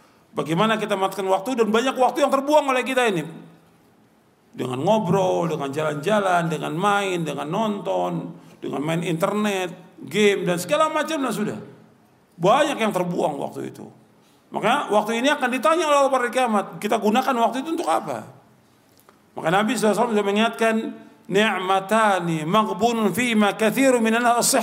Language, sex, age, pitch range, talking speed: Indonesian, male, 40-59, 190-250 Hz, 130 wpm